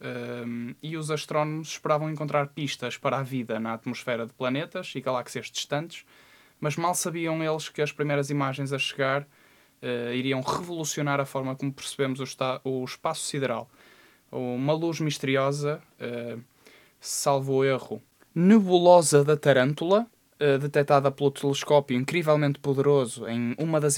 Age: 10-29